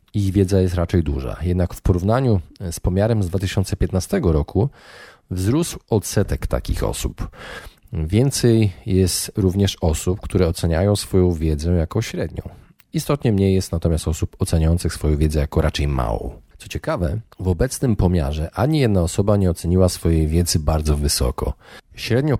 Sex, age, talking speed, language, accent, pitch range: male, 40-59, 140 wpm, Polish, native, 85-105 Hz